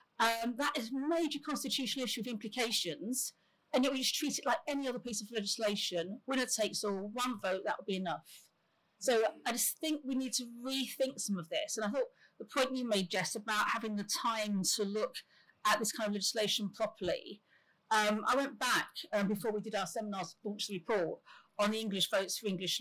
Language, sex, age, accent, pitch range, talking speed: English, female, 40-59, British, 205-265 Hz, 210 wpm